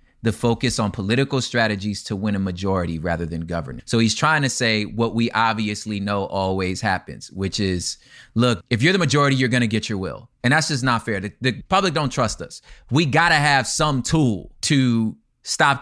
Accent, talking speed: American, 210 wpm